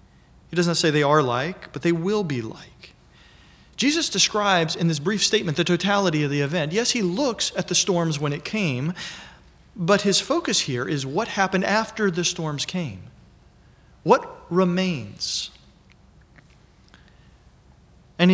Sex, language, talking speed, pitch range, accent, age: male, English, 145 wpm, 140-180 Hz, American, 40-59